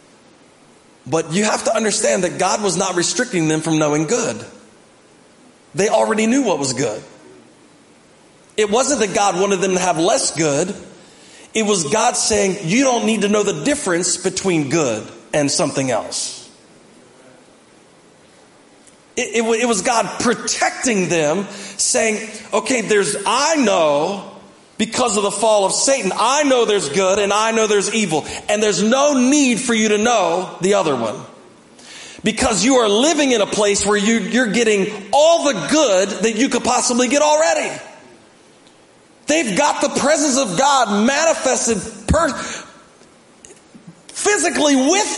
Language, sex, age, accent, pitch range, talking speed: English, male, 40-59, American, 200-270 Hz, 150 wpm